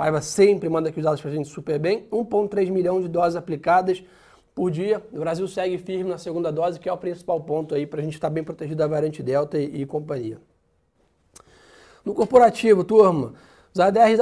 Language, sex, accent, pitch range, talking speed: Portuguese, male, Brazilian, 160-200 Hz, 205 wpm